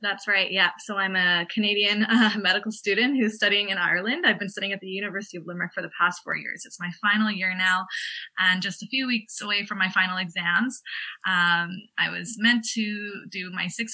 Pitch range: 180-215 Hz